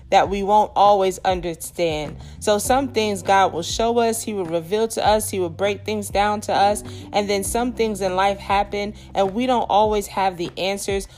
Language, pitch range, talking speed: English, 185-215 Hz, 205 wpm